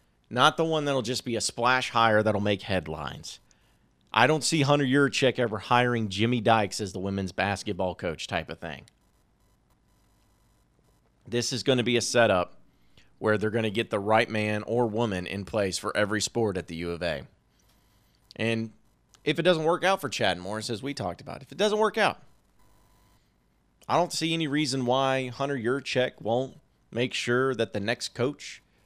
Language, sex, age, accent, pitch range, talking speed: English, male, 30-49, American, 100-135 Hz, 185 wpm